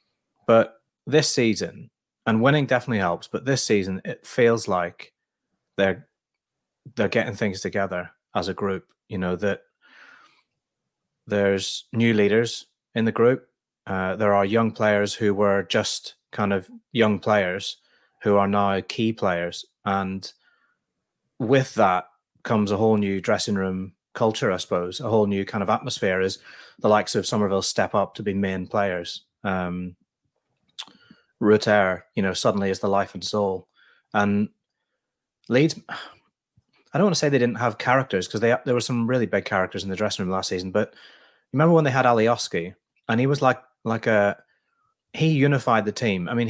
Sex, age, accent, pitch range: male, 30-49, British, 95-120 Hz